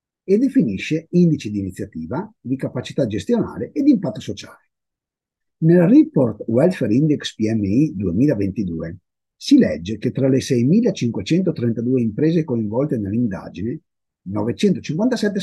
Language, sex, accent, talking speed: Italian, male, native, 110 wpm